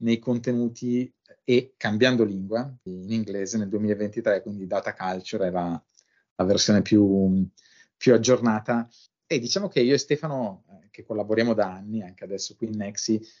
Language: Italian